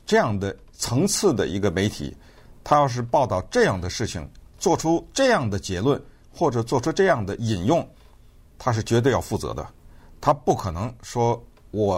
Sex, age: male, 50-69